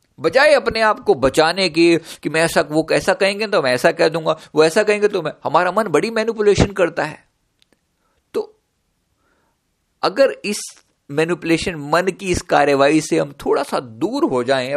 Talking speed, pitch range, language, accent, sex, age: 170 wpm, 160-245 Hz, Hindi, native, male, 50-69